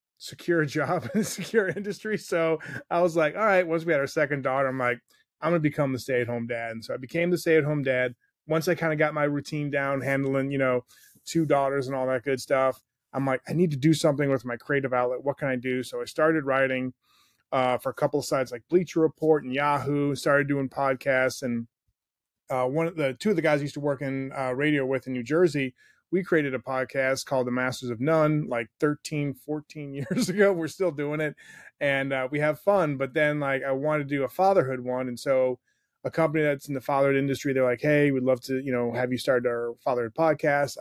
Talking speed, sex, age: 245 wpm, male, 20-39